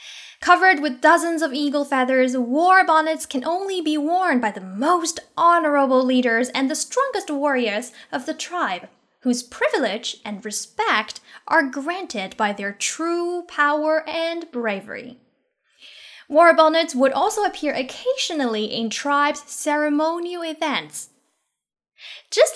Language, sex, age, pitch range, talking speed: English, female, 10-29, 255-345 Hz, 125 wpm